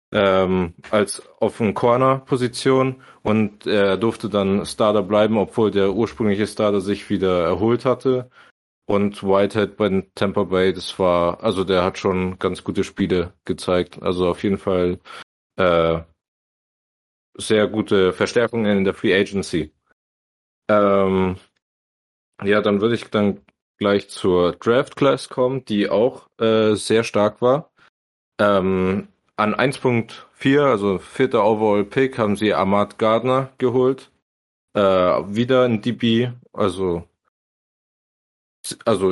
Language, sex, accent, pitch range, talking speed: German, male, German, 95-115 Hz, 125 wpm